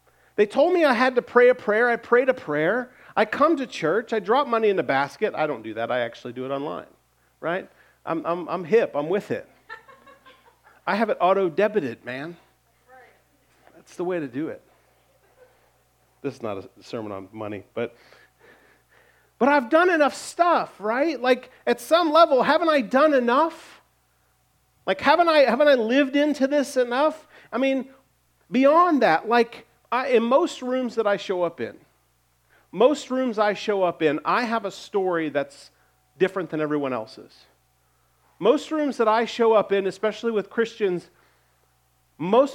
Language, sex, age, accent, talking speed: English, male, 40-59, American, 170 wpm